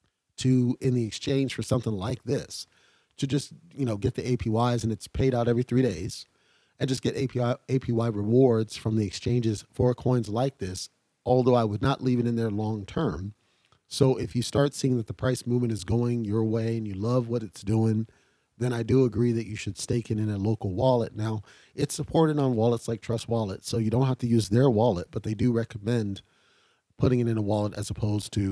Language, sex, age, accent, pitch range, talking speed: English, male, 30-49, American, 110-130 Hz, 220 wpm